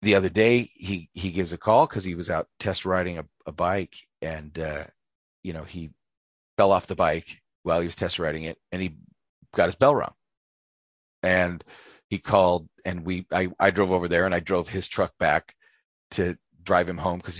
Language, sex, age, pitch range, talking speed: English, male, 40-59, 90-120 Hz, 205 wpm